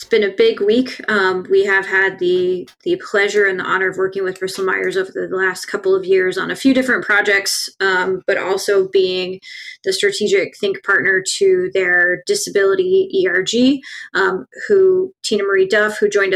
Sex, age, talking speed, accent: female, 20-39, 185 wpm, American